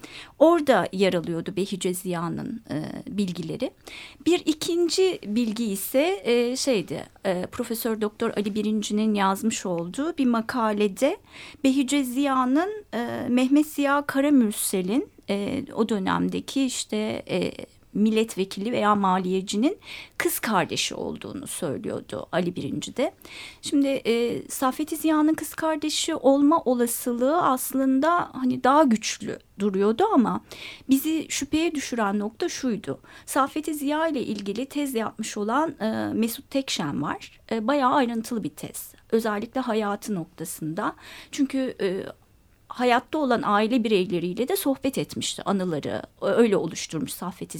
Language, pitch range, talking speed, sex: Turkish, 215-295 Hz, 115 wpm, female